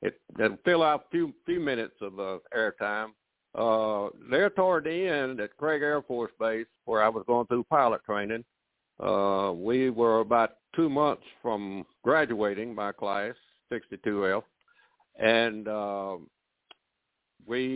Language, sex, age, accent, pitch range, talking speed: English, male, 60-79, American, 110-145 Hz, 150 wpm